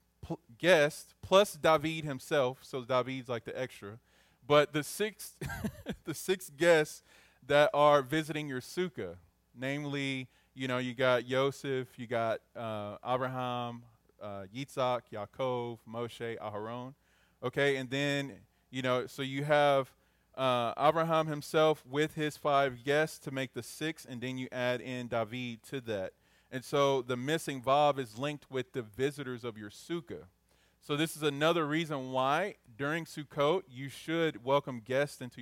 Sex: male